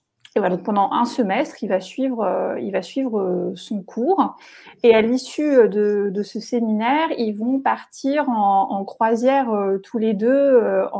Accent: French